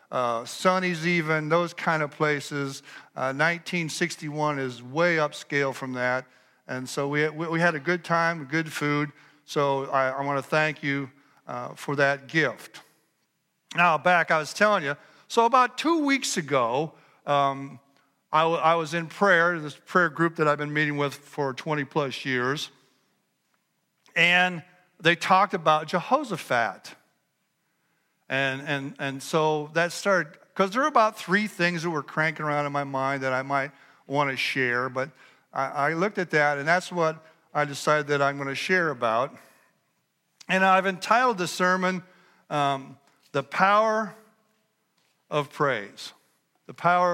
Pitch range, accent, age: 140-180 Hz, American, 50-69